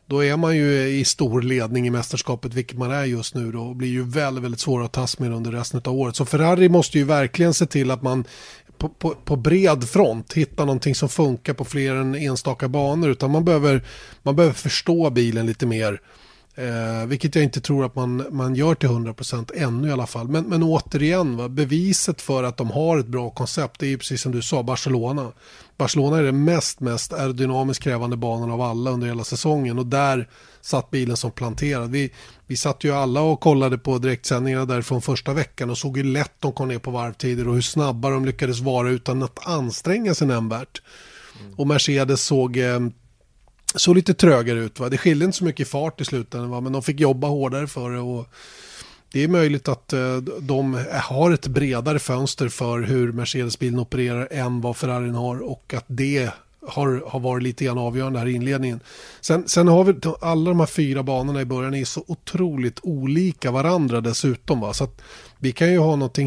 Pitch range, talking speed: 125-145 Hz, 200 wpm